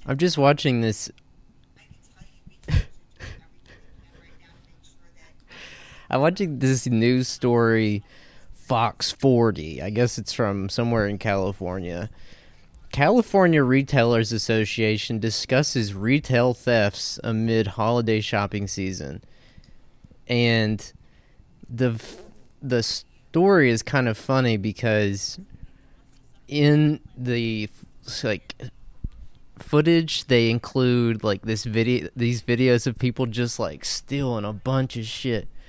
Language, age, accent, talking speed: English, 20-39, American, 95 wpm